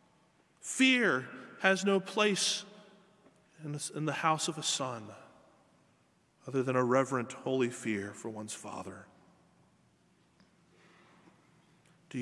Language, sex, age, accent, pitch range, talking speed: English, male, 30-49, American, 115-145 Hz, 100 wpm